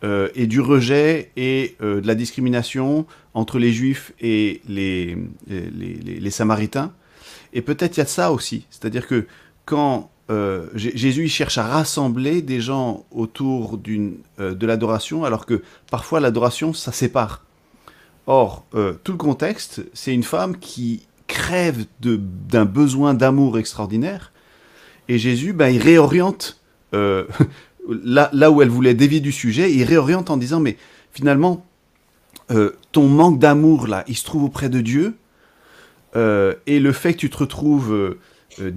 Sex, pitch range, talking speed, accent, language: male, 110-150 Hz, 160 wpm, French, French